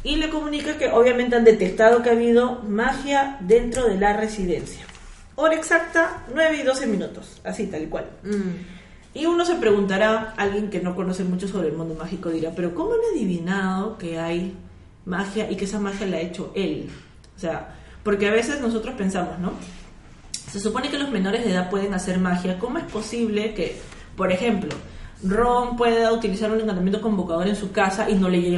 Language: Spanish